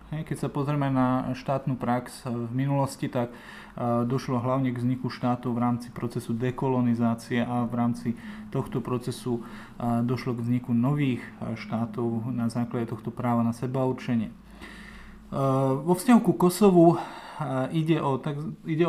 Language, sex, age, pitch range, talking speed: Slovak, male, 30-49, 125-155 Hz, 125 wpm